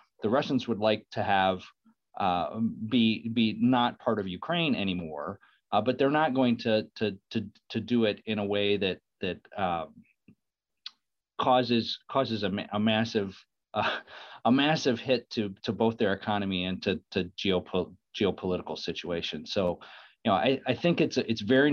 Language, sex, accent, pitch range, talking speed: English, male, American, 100-120 Hz, 165 wpm